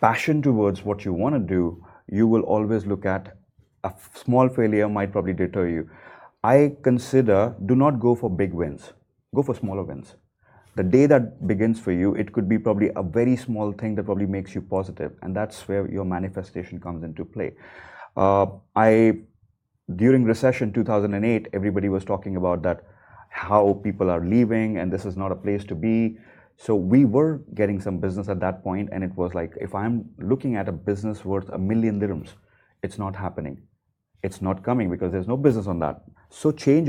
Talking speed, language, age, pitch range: 190 wpm, Arabic, 30-49, 95-115 Hz